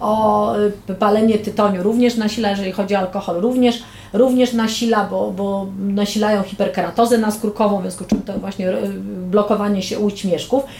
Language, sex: Polish, female